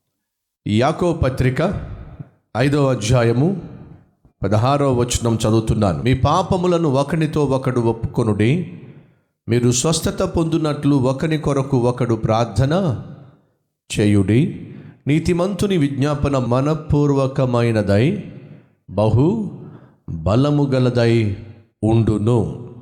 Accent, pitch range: native, 115-150 Hz